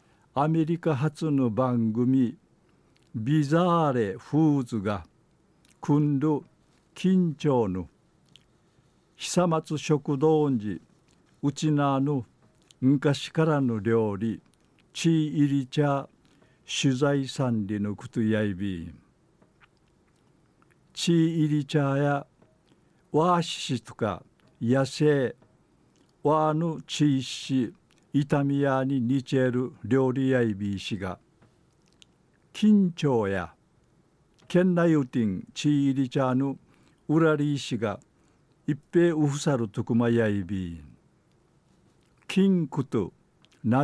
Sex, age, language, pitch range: male, 60-79, Japanese, 120-150 Hz